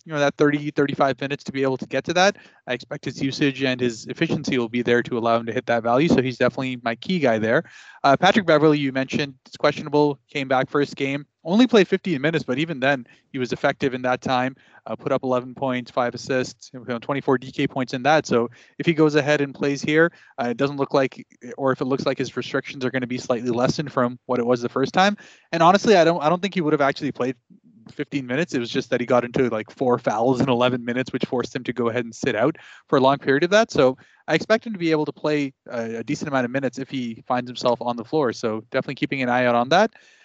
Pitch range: 125-150 Hz